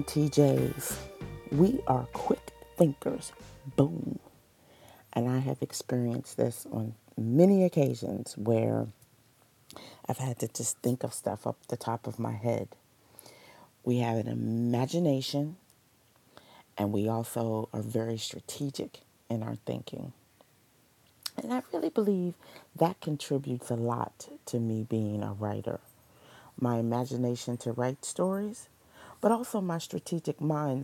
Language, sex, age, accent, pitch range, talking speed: English, female, 40-59, American, 115-145 Hz, 125 wpm